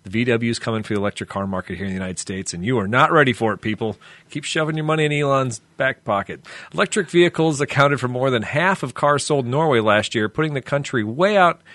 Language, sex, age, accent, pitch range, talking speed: English, male, 40-59, American, 110-140 Hz, 250 wpm